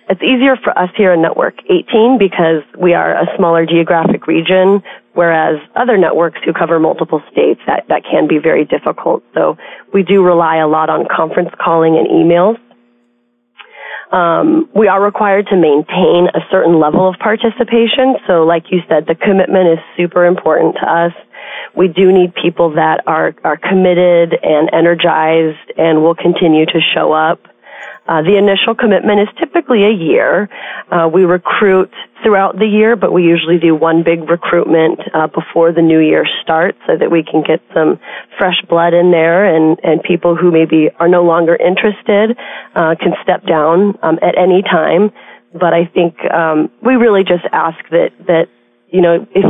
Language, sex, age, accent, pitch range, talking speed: English, female, 30-49, American, 165-200 Hz, 175 wpm